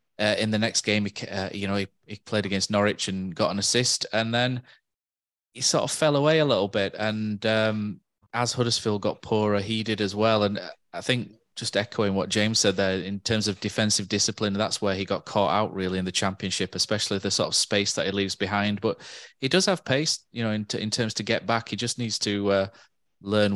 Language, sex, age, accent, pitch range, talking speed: English, male, 20-39, British, 95-115 Hz, 225 wpm